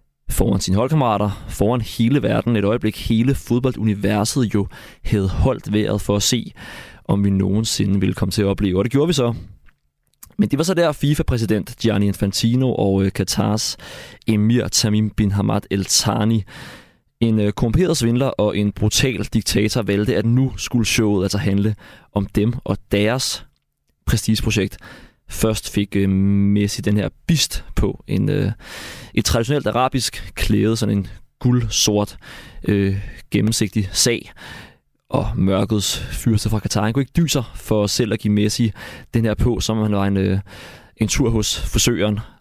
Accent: native